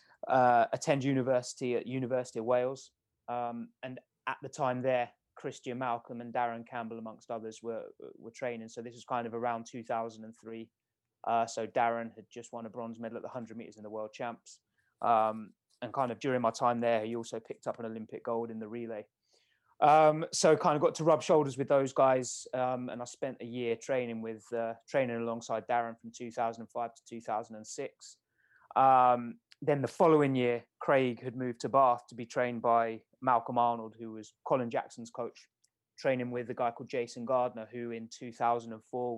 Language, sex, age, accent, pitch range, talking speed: English, male, 20-39, British, 115-130 Hz, 190 wpm